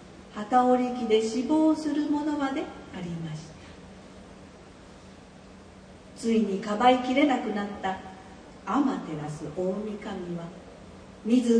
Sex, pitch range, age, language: female, 185-255 Hz, 40-59, Japanese